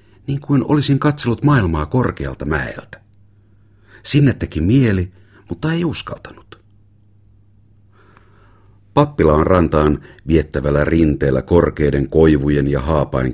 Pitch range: 75-100 Hz